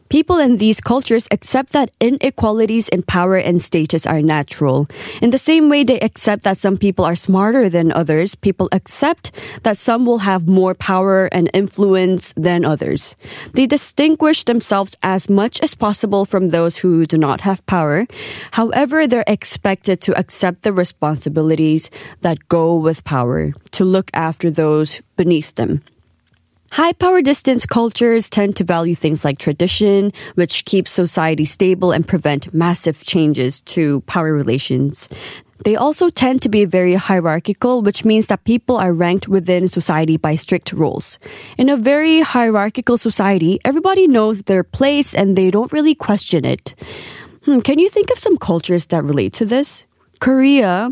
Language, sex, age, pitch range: Korean, female, 20-39, 170-240 Hz